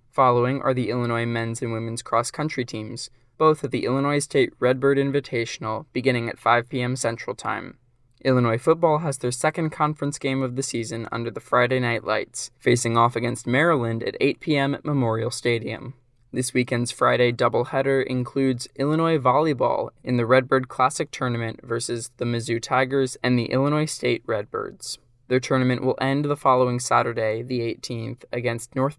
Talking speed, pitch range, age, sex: 165 wpm, 120-135 Hz, 20-39, male